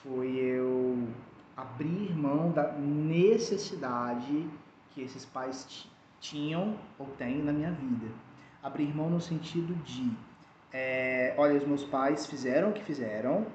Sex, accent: male, Brazilian